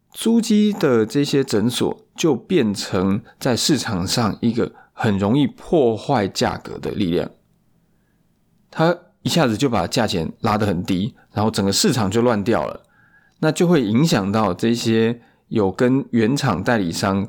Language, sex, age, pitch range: Chinese, male, 20-39, 100-130 Hz